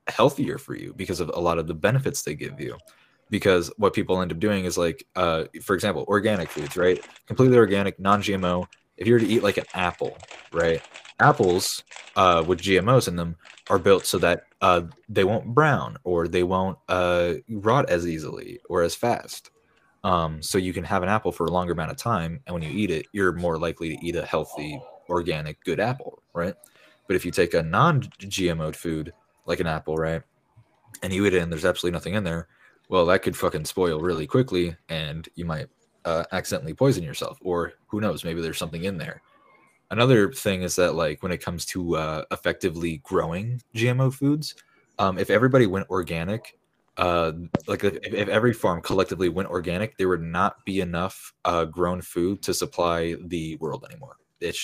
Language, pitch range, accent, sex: English, 85-100 Hz, American, male